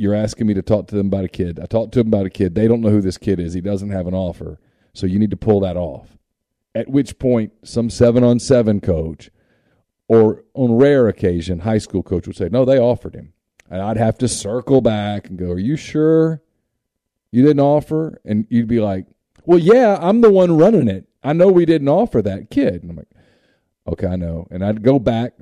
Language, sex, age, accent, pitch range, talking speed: English, male, 40-59, American, 100-130 Hz, 230 wpm